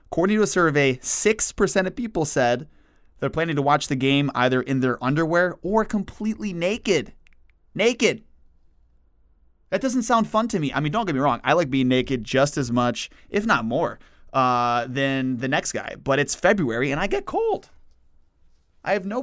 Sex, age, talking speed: male, 20-39, 185 wpm